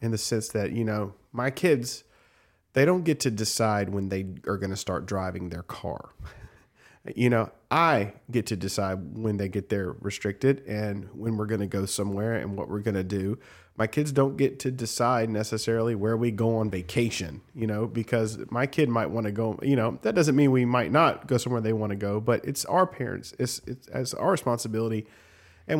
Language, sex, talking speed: English, male, 210 wpm